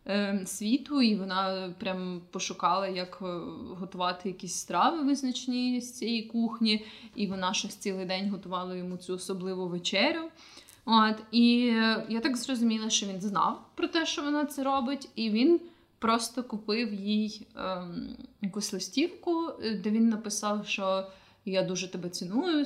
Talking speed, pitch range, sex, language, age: 140 wpm, 190-250 Hz, female, Ukrainian, 20-39